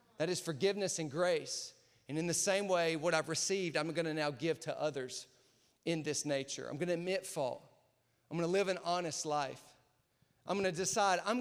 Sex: male